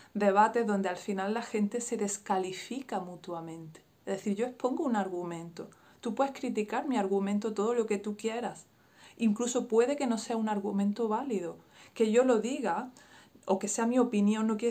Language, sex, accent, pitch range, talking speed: Spanish, female, Spanish, 195-240 Hz, 180 wpm